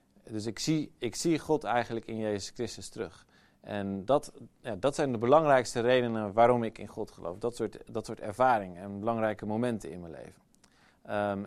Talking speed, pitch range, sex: 190 wpm, 100-120 Hz, male